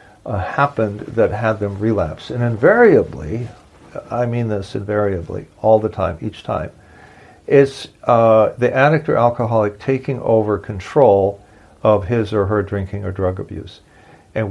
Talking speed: 145 wpm